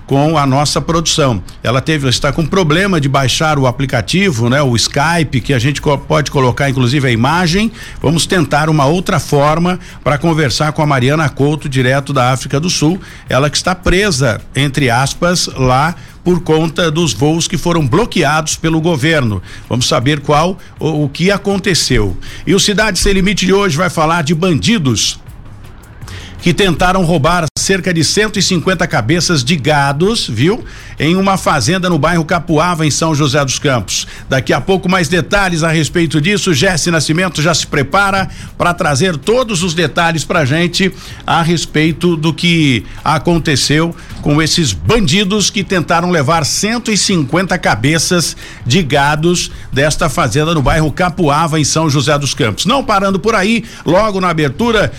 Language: Portuguese